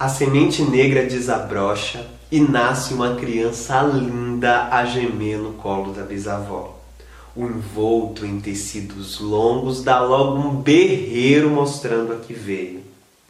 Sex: male